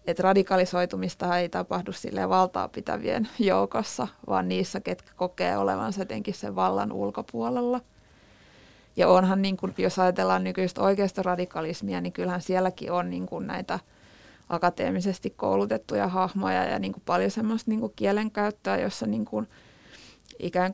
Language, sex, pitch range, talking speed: Finnish, female, 170-200 Hz, 130 wpm